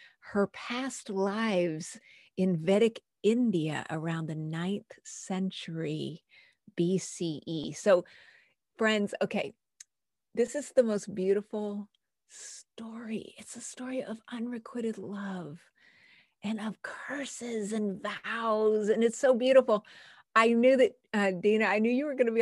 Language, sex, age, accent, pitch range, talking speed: English, female, 40-59, American, 190-260 Hz, 125 wpm